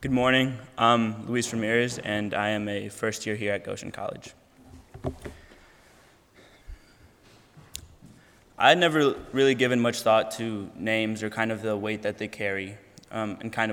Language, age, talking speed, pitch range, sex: English, 10-29, 155 wpm, 105-120 Hz, male